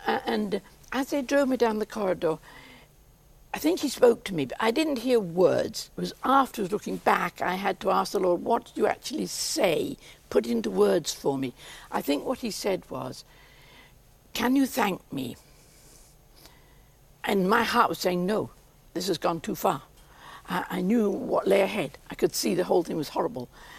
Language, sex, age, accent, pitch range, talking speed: English, female, 60-79, British, 180-265 Hz, 195 wpm